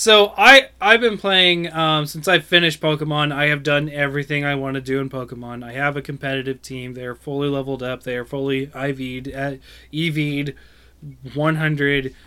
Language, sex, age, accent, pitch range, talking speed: English, male, 20-39, American, 130-160 Hz, 175 wpm